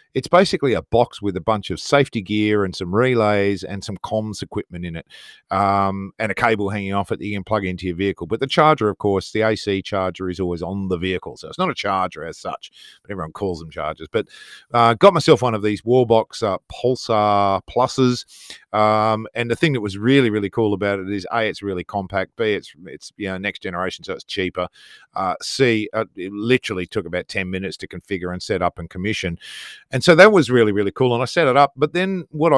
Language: English